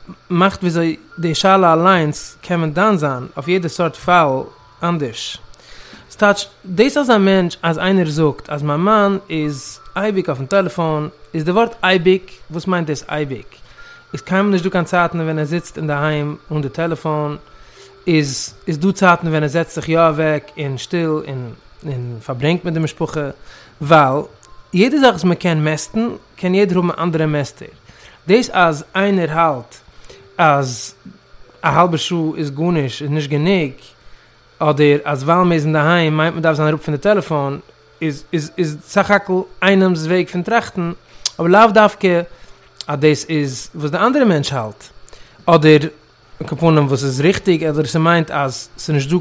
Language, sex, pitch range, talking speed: English, male, 150-185 Hz, 165 wpm